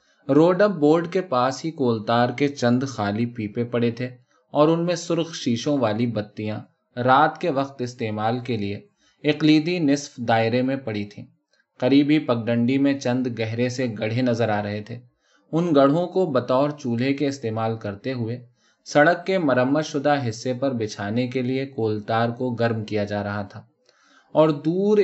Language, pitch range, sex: Urdu, 115-145 Hz, male